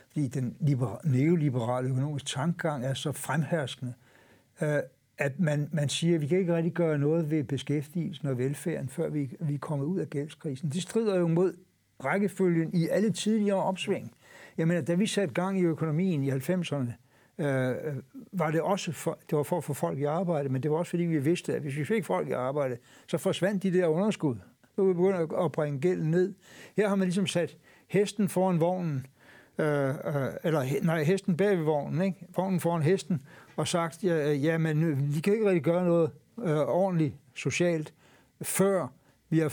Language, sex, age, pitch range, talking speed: Danish, male, 60-79, 145-180 Hz, 190 wpm